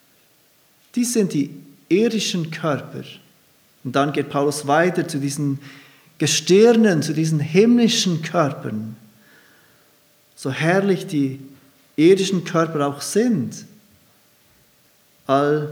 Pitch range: 145-180 Hz